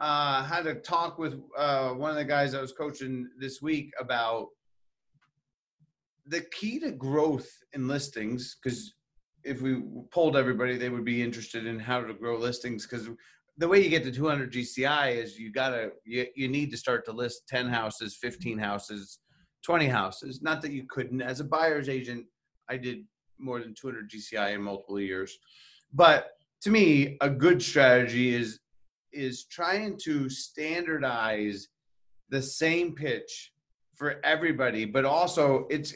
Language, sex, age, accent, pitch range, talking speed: English, male, 30-49, American, 125-150 Hz, 160 wpm